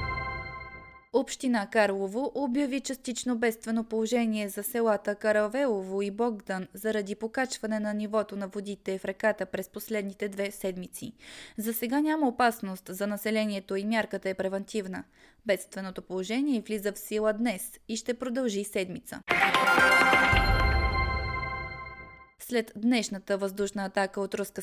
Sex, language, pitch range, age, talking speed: female, Bulgarian, 195-240 Hz, 20-39, 120 wpm